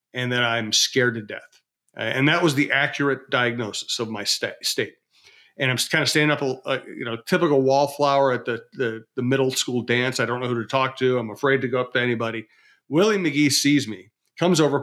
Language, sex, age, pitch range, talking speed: English, male, 40-59, 125-155 Hz, 220 wpm